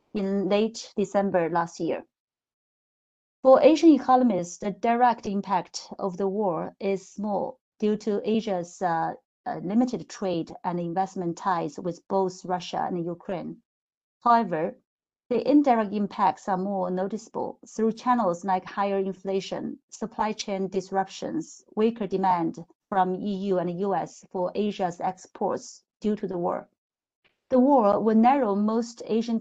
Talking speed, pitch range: 135 wpm, 185-225 Hz